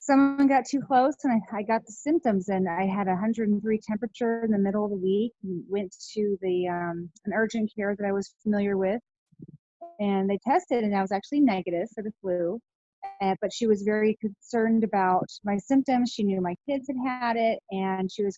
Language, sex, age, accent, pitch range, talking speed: English, female, 30-49, American, 195-230 Hz, 210 wpm